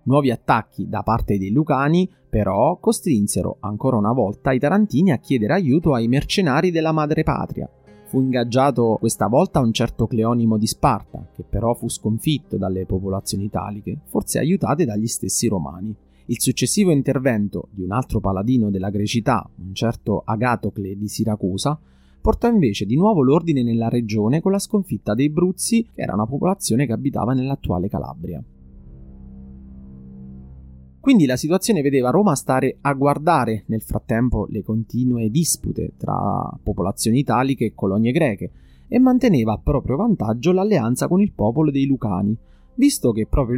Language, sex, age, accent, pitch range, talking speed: Italian, male, 30-49, native, 105-145 Hz, 150 wpm